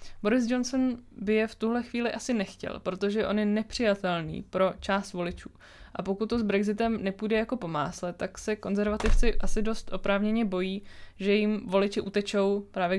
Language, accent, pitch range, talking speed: Czech, native, 180-215 Hz, 165 wpm